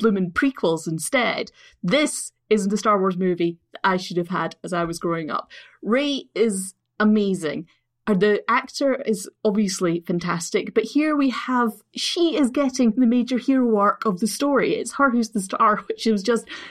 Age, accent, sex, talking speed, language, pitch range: 30-49, British, female, 175 wpm, English, 200-265 Hz